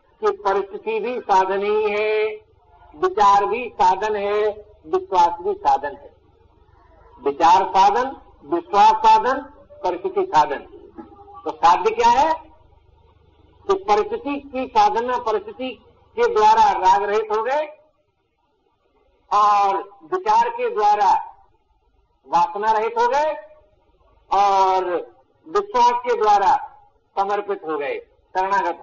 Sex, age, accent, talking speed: male, 60-79, native, 100 wpm